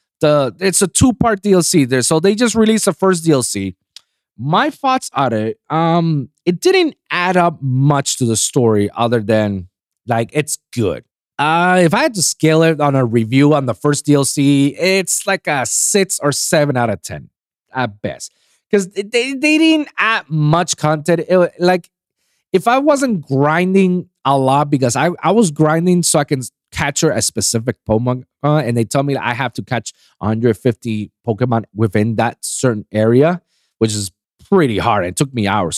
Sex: male